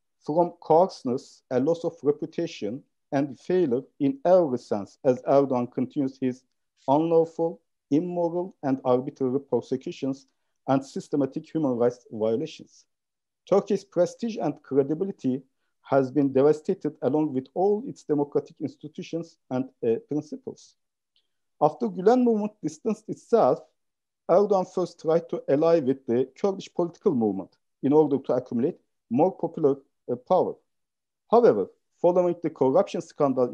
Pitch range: 135-180 Hz